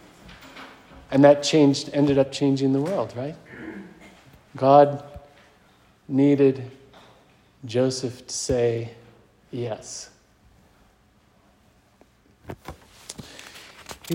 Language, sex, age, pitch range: English, male, 40-59, 130-170 Hz